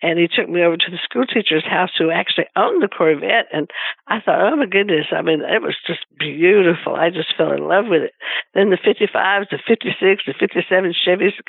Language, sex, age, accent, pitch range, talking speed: English, female, 60-79, American, 185-245 Hz, 225 wpm